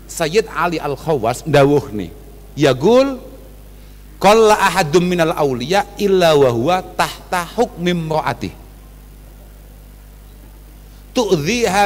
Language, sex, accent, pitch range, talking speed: Indonesian, male, native, 140-200 Hz, 80 wpm